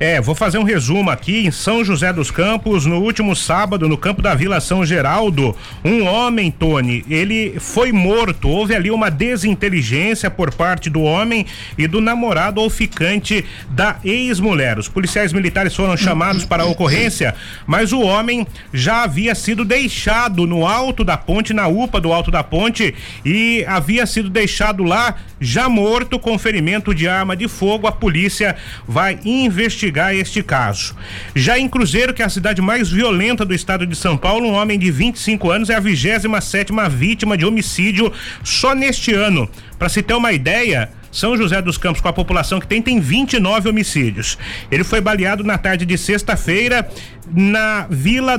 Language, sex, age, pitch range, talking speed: Portuguese, male, 40-59, 170-220 Hz, 170 wpm